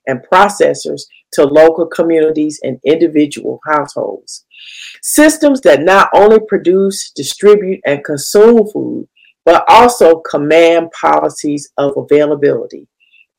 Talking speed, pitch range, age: 105 wpm, 155-230 Hz, 40-59